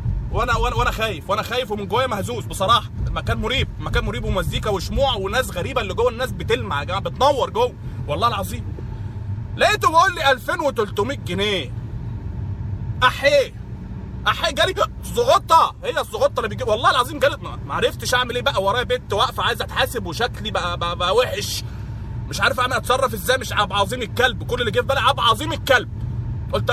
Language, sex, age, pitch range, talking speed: Arabic, male, 30-49, 110-125 Hz, 175 wpm